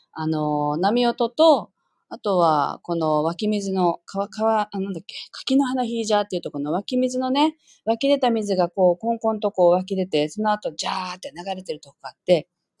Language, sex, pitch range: Japanese, female, 175-285 Hz